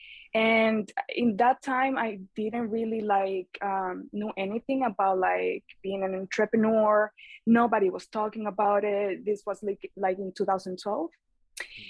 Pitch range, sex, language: 195-230 Hz, female, English